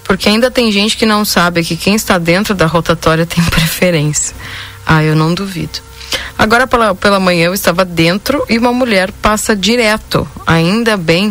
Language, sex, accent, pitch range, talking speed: Portuguese, female, Brazilian, 155-205 Hz, 175 wpm